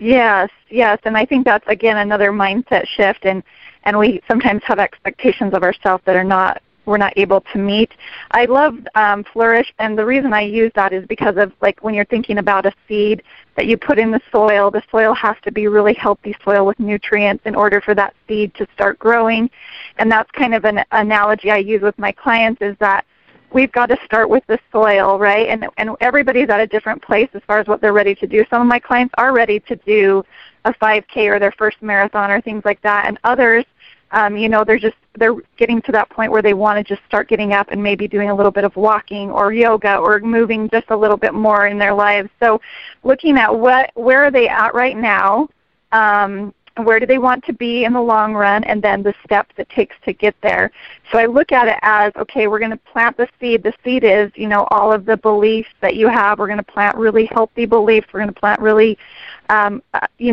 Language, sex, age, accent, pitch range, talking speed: English, female, 30-49, American, 205-230 Hz, 230 wpm